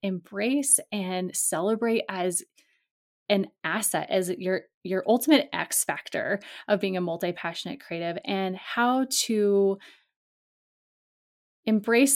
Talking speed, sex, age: 105 wpm, female, 20-39